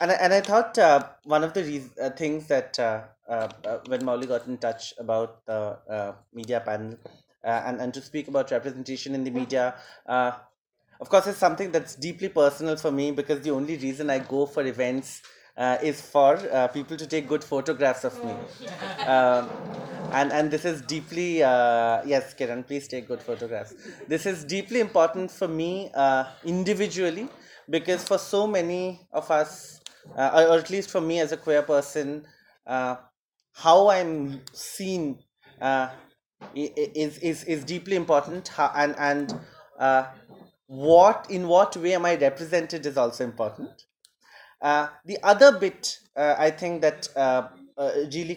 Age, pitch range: 20-39, 130-170 Hz